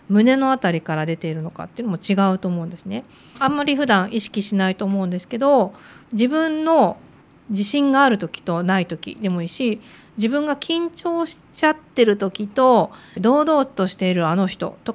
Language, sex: Japanese, female